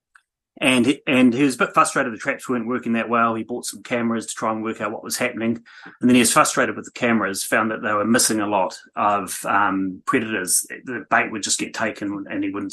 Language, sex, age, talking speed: English, male, 30-49, 250 wpm